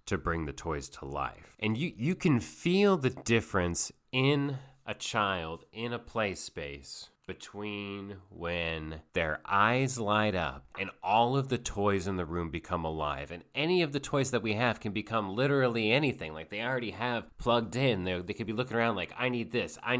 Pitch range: 90-120 Hz